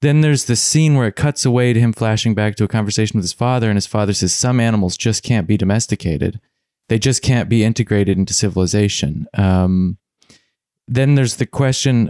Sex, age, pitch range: male, 20-39, 105-130 Hz